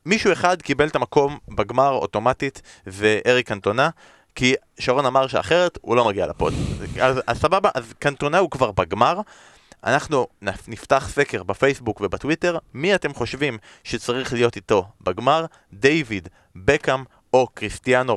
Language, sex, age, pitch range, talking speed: Hebrew, male, 20-39, 115-150 Hz, 140 wpm